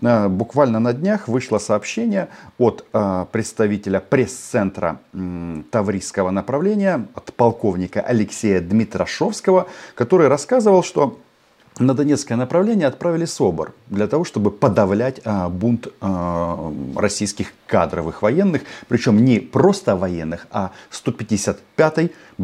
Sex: male